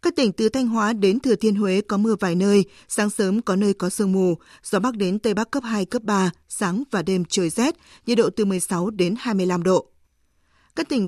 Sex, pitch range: female, 190-235 Hz